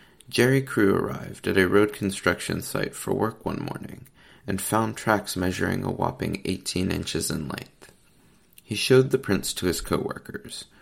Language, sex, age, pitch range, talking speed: English, male, 30-49, 90-110 Hz, 160 wpm